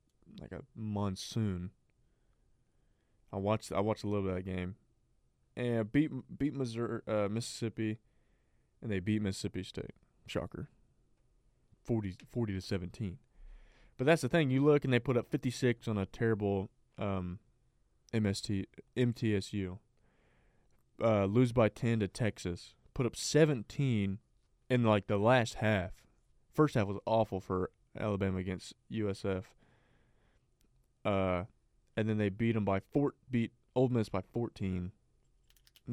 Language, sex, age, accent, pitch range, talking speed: English, male, 20-39, American, 100-120 Hz, 140 wpm